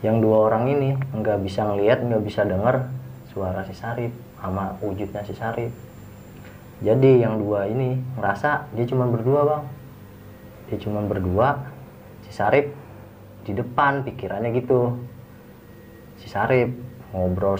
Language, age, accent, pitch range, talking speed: Indonesian, 30-49, native, 100-120 Hz, 130 wpm